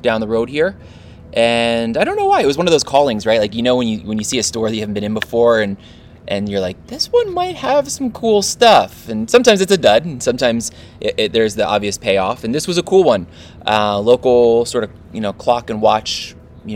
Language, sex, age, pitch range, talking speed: English, male, 20-39, 100-125 Hz, 250 wpm